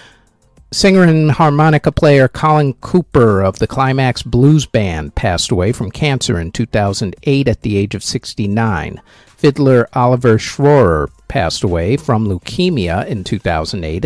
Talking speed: 130 wpm